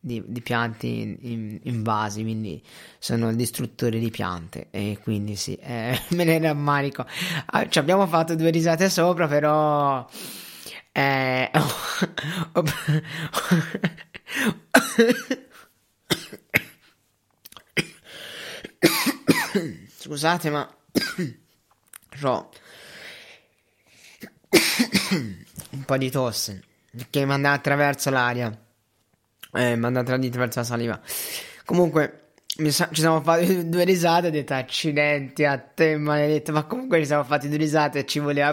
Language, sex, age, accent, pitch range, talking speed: Italian, male, 30-49, native, 115-150 Hz, 115 wpm